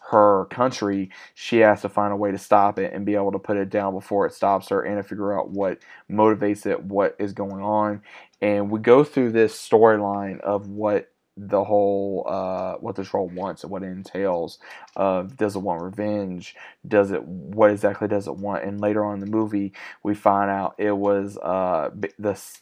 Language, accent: English, American